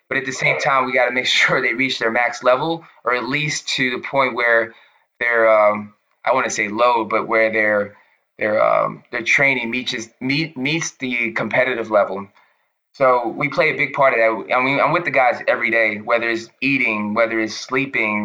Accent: American